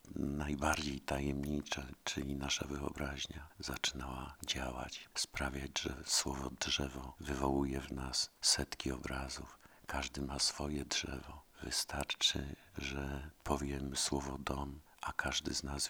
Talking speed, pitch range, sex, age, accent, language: 110 wpm, 70-75 Hz, male, 50-69, native, Polish